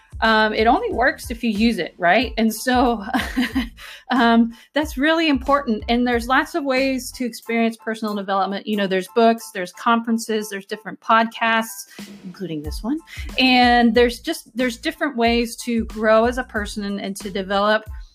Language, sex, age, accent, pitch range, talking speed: English, female, 30-49, American, 205-250 Hz, 165 wpm